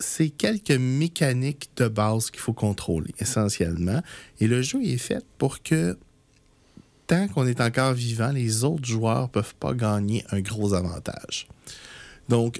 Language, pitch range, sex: French, 100-130 Hz, male